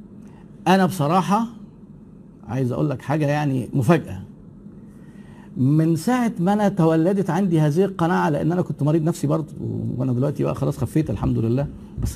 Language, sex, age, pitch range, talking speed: Arabic, male, 50-69, 140-195 Hz, 150 wpm